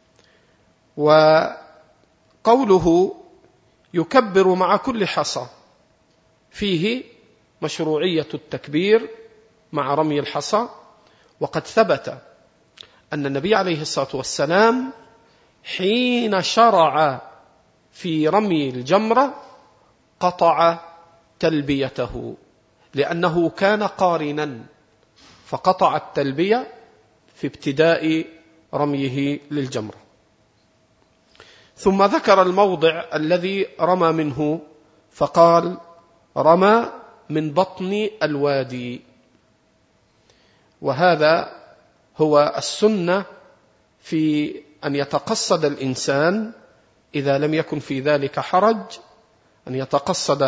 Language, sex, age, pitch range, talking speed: Arabic, male, 40-59, 145-195 Hz, 70 wpm